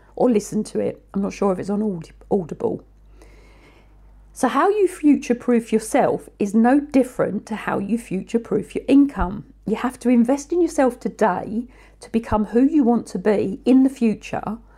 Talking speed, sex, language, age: 170 wpm, female, English, 50-69